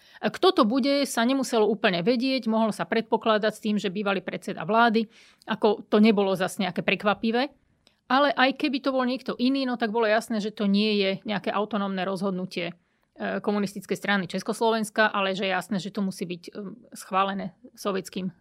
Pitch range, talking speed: 205-250 Hz, 175 wpm